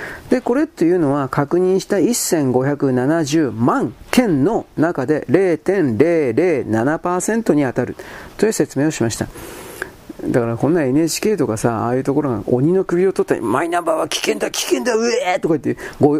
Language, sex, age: Japanese, male, 40-59